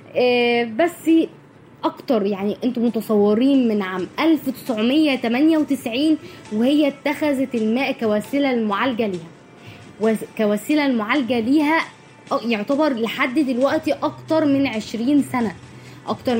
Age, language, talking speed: 10-29, Arabic, 90 wpm